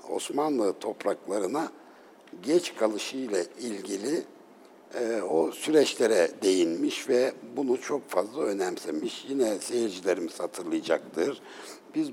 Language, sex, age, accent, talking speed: Turkish, male, 60-79, native, 95 wpm